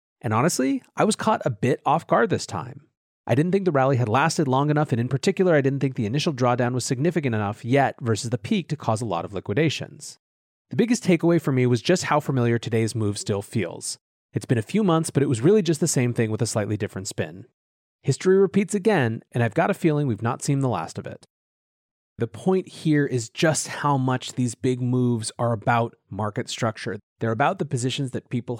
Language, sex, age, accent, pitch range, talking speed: English, male, 30-49, American, 115-155 Hz, 225 wpm